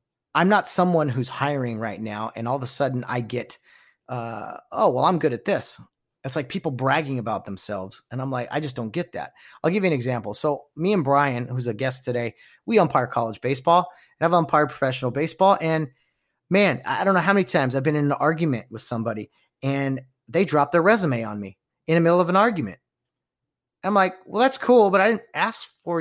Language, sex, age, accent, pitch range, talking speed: English, male, 30-49, American, 125-180 Hz, 220 wpm